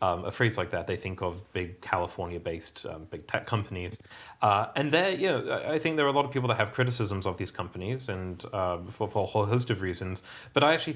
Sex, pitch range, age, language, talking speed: male, 95-115 Hz, 30-49, English, 250 wpm